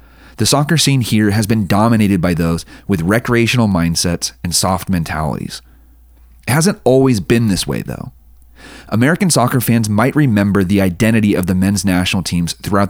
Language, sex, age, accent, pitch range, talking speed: English, male, 30-49, American, 85-115 Hz, 165 wpm